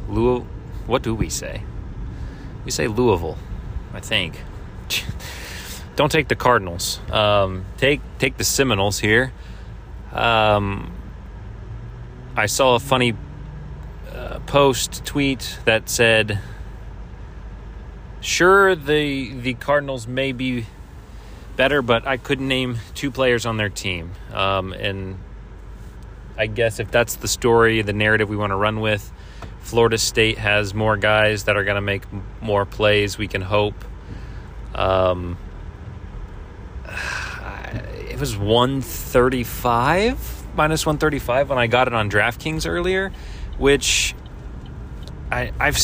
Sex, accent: male, American